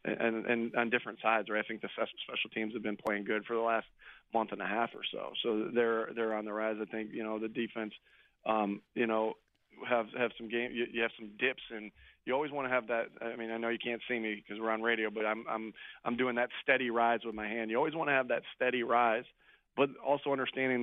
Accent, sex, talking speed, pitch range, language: American, male, 260 wpm, 110-125 Hz, English